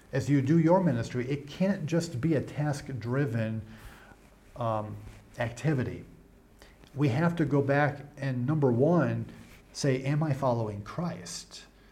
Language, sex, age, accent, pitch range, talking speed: English, male, 40-59, American, 125-160 Hz, 135 wpm